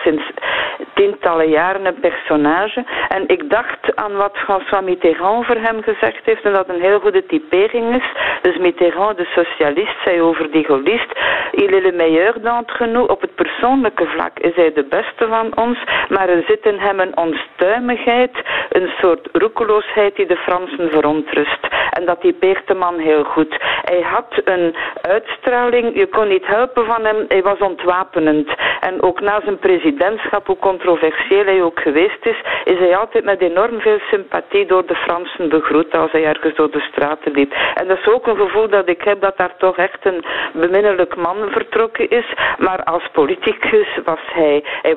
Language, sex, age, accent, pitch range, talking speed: Dutch, female, 50-69, Dutch, 165-235 Hz, 180 wpm